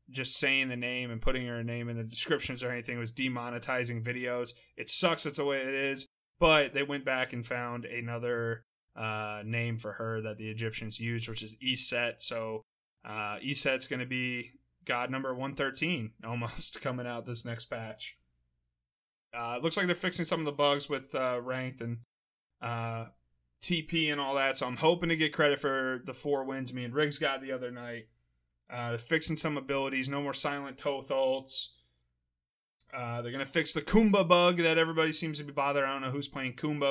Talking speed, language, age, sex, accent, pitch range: 190 wpm, English, 20-39, male, American, 115-140 Hz